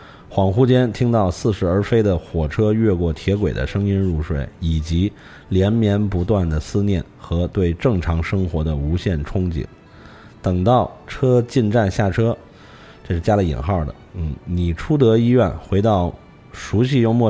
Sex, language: male, Chinese